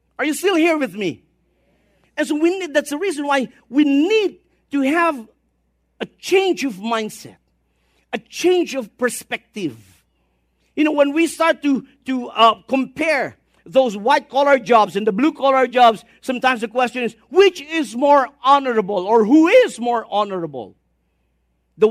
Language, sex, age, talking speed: English, male, 50-69, 155 wpm